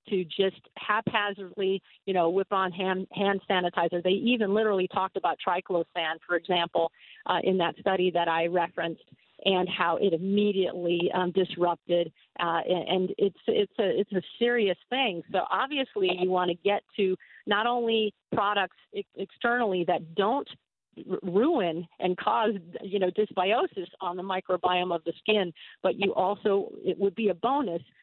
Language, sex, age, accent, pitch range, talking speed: English, female, 50-69, American, 175-205 Hz, 160 wpm